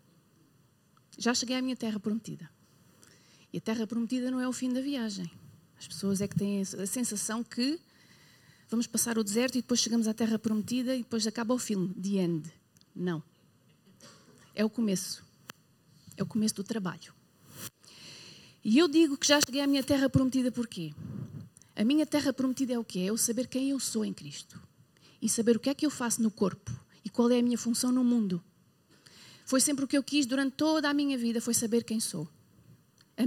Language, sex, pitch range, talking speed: Portuguese, female, 215-265 Hz, 200 wpm